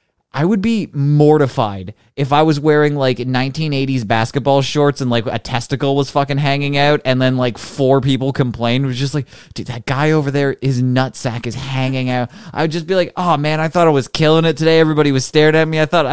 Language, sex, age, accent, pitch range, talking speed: English, male, 20-39, American, 125-170 Hz, 225 wpm